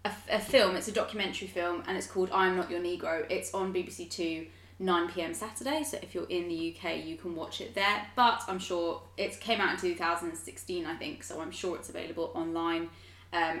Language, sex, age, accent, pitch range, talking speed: English, female, 20-39, British, 170-215 Hz, 210 wpm